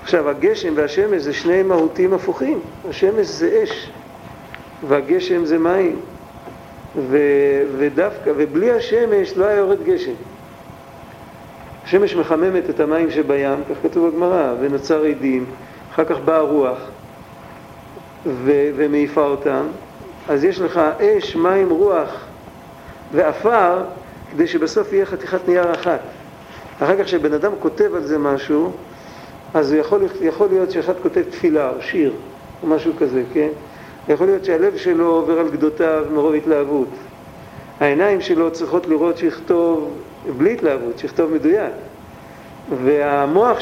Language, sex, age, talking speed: Hebrew, male, 50-69, 120 wpm